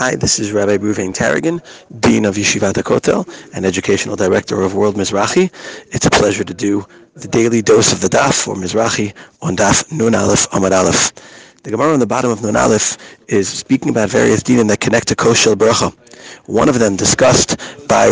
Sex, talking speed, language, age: male, 190 wpm, English, 40-59